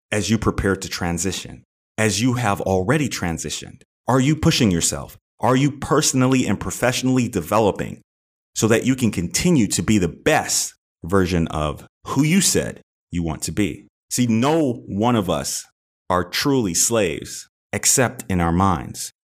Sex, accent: male, American